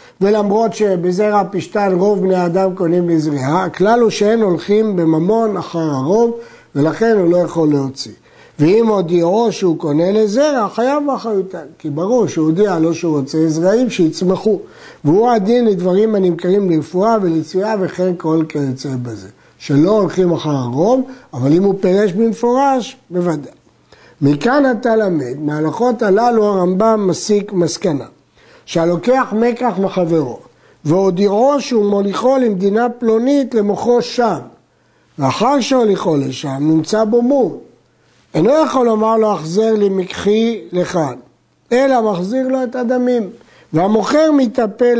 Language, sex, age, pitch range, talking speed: Hebrew, male, 60-79, 170-235 Hz, 125 wpm